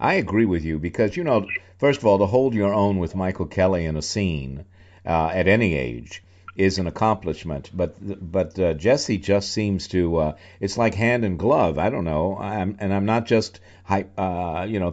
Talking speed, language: 210 wpm, English